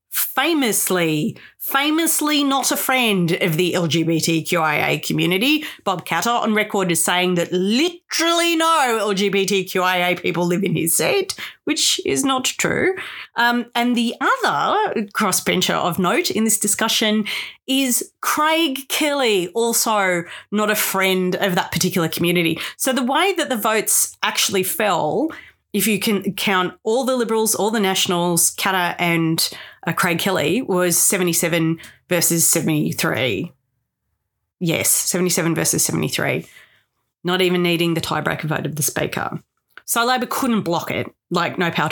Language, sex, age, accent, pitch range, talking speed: English, female, 30-49, Australian, 175-250 Hz, 135 wpm